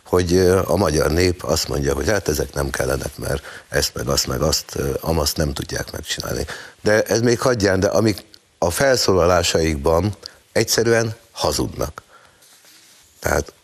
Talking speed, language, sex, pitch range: 140 wpm, Hungarian, male, 75-90 Hz